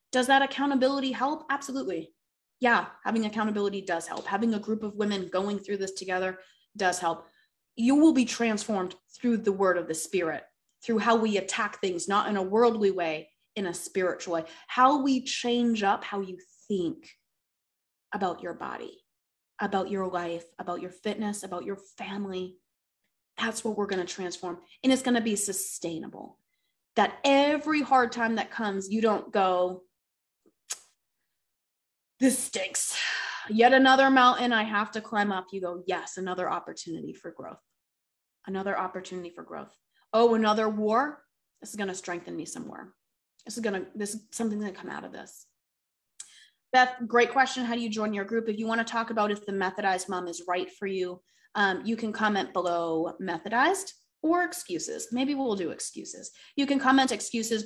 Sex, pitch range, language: female, 185-235 Hz, English